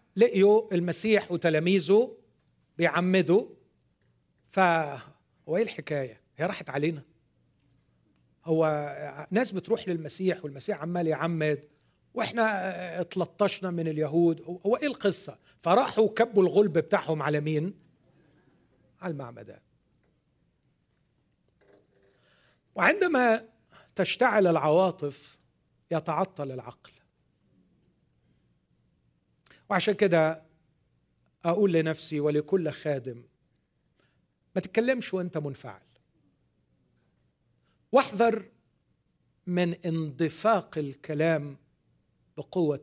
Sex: male